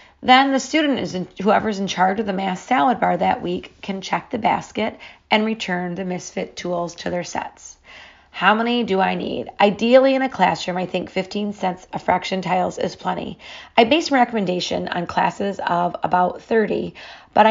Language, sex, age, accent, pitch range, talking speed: English, female, 40-59, American, 180-230 Hz, 190 wpm